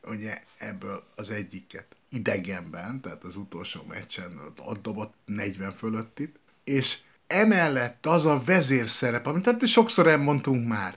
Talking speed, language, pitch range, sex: 125 wpm, Hungarian, 115-155 Hz, male